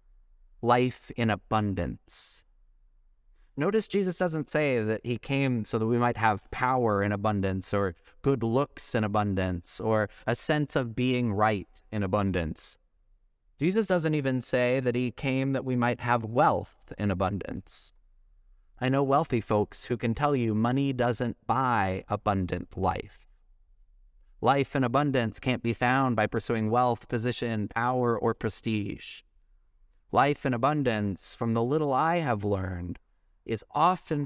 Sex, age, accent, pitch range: male, 30-49, American, 95-125 Hz